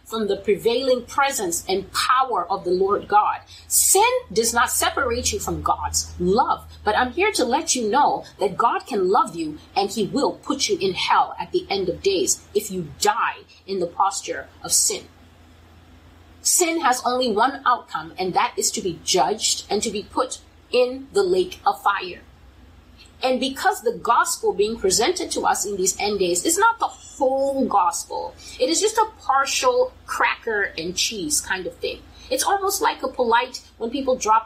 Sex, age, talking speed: female, 30-49, 185 wpm